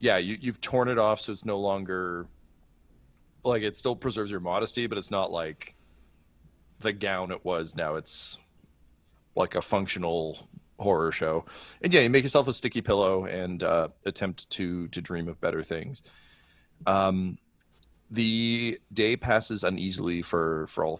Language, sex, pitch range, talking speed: English, male, 80-110 Hz, 160 wpm